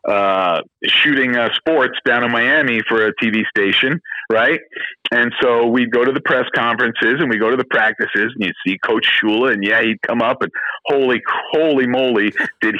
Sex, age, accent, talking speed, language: male, 40-59, American, 190 wpm, English